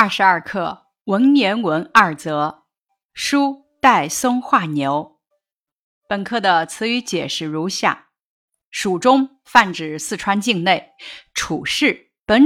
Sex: female